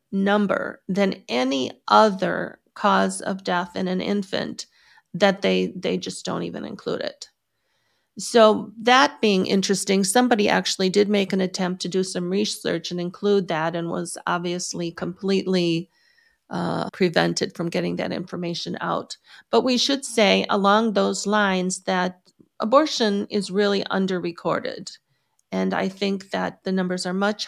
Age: 40-59